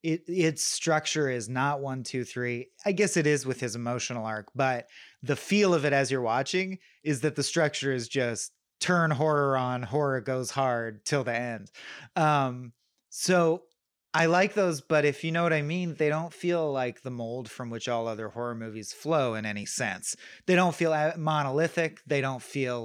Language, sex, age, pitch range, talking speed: English, male, 30-49, 125-165 Hz, 190 wpm